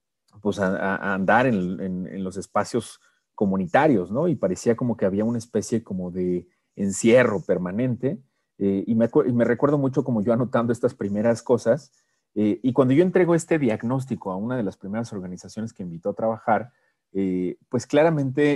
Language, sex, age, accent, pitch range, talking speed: Spanish, male, 40-59, Mexican, 100-120 Hz, 175 wpm